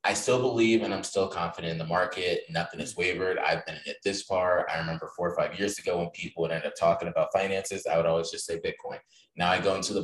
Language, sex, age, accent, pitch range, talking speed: English, male, 20-39, American, 95-115 Hz, 270 wpm